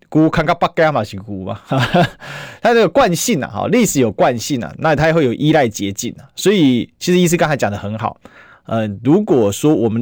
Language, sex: Chinese, male